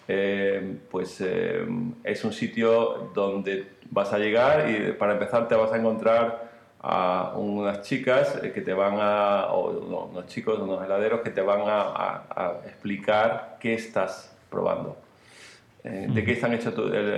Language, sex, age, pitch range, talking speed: Spanish, male, 40-59, 100-115 Hz, 160 wpm